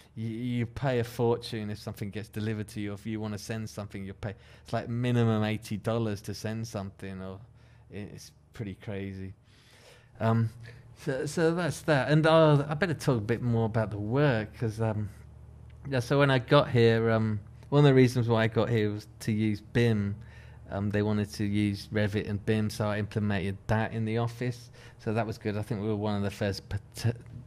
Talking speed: 210 wpm